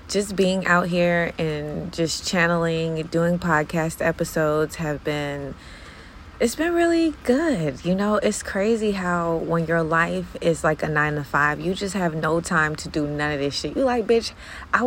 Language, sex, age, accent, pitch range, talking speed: English, female, 20-39, American, 150-180 Hz, 180 wpm